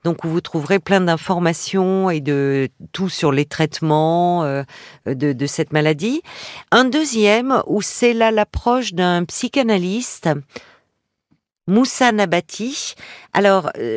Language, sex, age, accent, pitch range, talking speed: French, female, 50-69, French, 160-215 Hz, 120 wpm